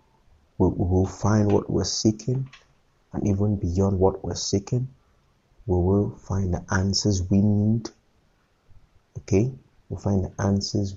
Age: 30-49